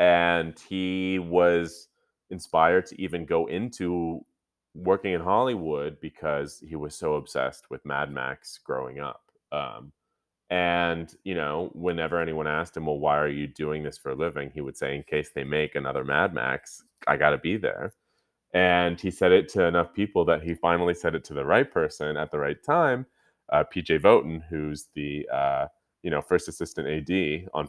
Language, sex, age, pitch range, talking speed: English, male, 30-49, 75-95 Hz, 185 wpm